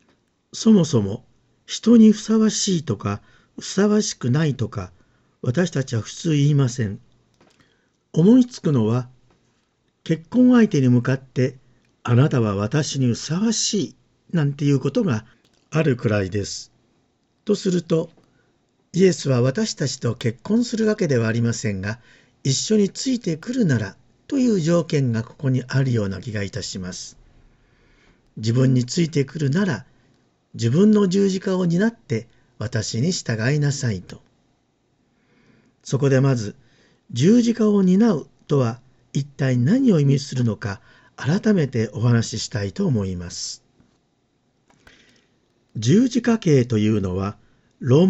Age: 50-69